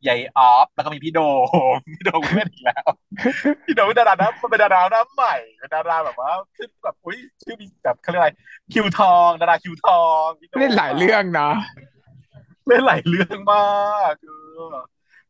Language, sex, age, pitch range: Thai, male, 30-49, 140-200 Hz